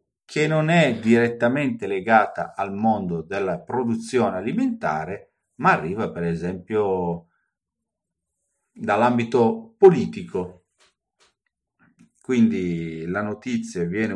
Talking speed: 85 wpm